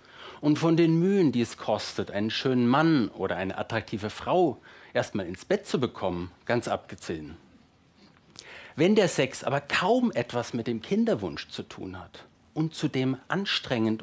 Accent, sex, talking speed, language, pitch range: German, male, 155 wpm, German, 110-150 Hz